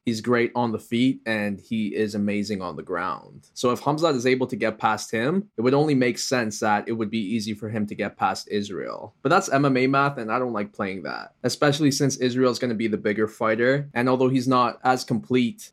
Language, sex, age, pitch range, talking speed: English, male, 20-39, 110-135 Hz, 240 wpm